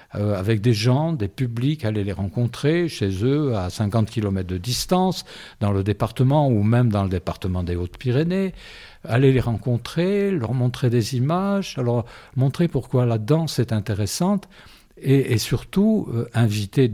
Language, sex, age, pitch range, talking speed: French, male, 60-79, 105-140 Hz, 150 wpm